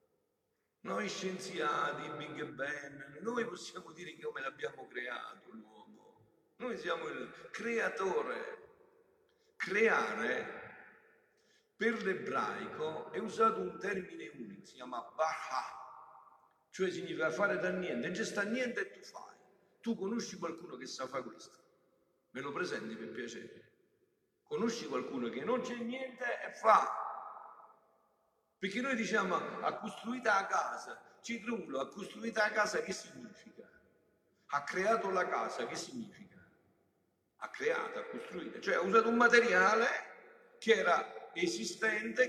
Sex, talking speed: male, 125 wpm